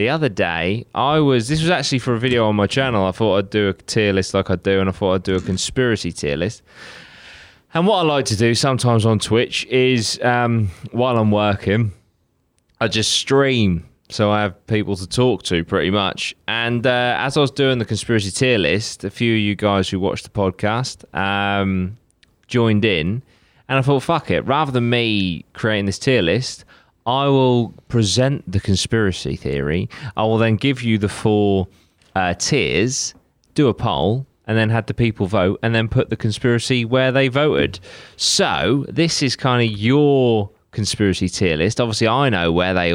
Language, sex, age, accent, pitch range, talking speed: English, male, 20-39, British, 100-130 Hz, 195 wpm